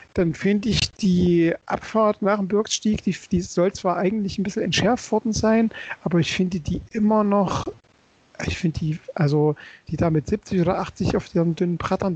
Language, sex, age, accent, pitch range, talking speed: German, male, 40-59, German, 165-205 Hz, 190 wpm